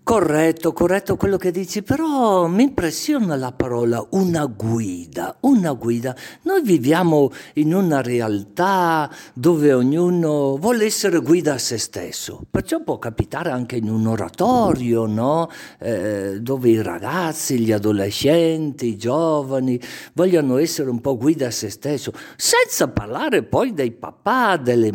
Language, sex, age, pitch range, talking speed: Italian, male, 50-69, 115-170 Hz, 135 wpm